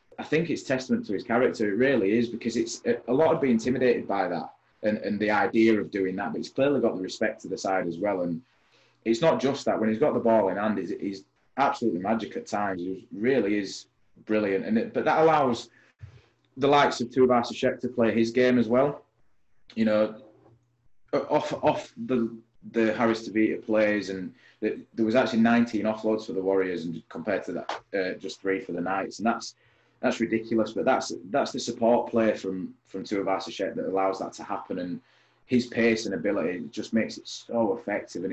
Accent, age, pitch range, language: British, 20-39, 95-120 Hz, English